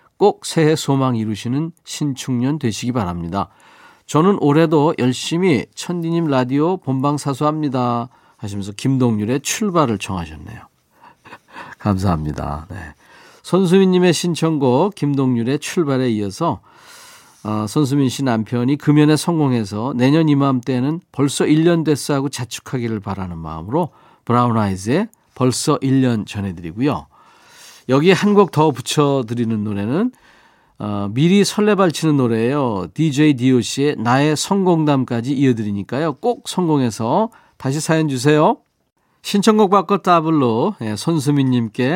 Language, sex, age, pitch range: Korean, male, 40-59, 115-160 Hz